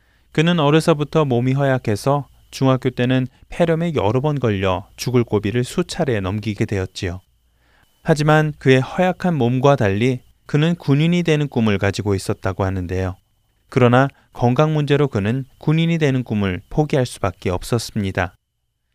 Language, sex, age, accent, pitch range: Korean, male, 20-39, native, 105-150 Hz